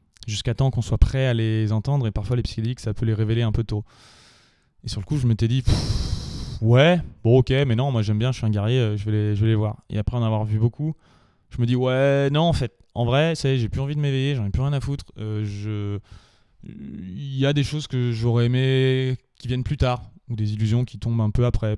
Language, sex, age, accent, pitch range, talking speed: French, male, 20-39, French, 105-125 Hz, 265 wpm